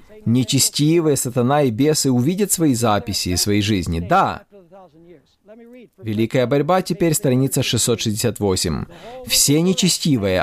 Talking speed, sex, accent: 105 wpm, male, native